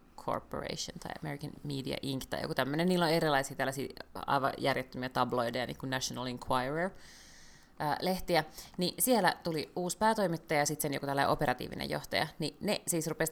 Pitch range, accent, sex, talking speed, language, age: 130-160 Hz, native, female, 145 wpm, Finnish, 30-49